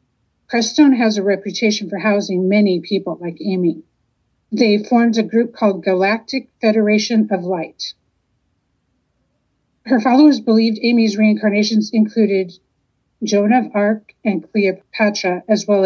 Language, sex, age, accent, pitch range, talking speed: English, female, 50-69, American, 185-225 Hz, 120 wpm